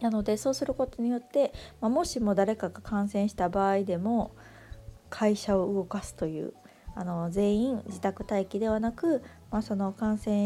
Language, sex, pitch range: Japanese, female, 185-225 Hz